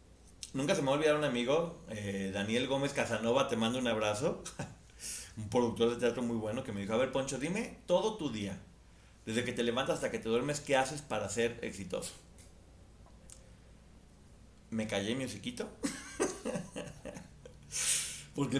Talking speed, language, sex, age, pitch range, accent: 155 wpm, Spanish, male, 40-59, 110-185 Hz, Mexican